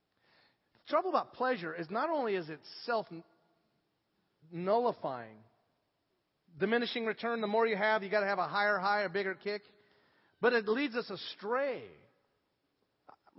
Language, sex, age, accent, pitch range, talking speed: English, male, 40-59, American, 165-225 Hz, 145 wpm